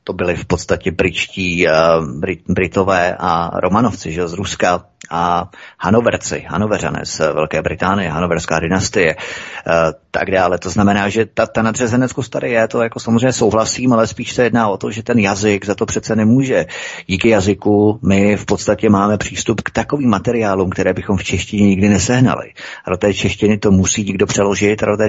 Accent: native